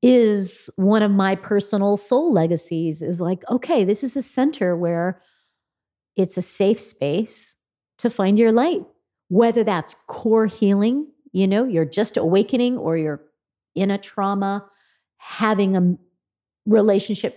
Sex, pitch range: female, 185-225 Hz